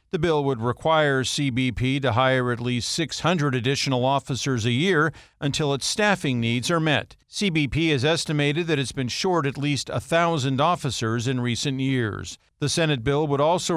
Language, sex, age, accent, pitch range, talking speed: English, male, 50-69, American, 130-155 Hz, 170 wpm